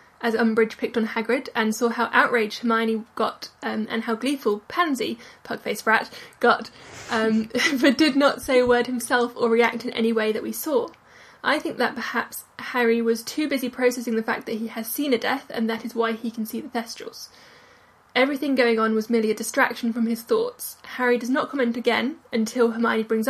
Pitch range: 220-245 Hz